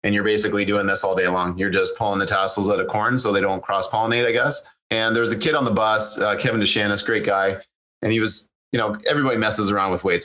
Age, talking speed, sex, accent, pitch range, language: 30-49, 270 wpm, male, American, 95-110 Hz, English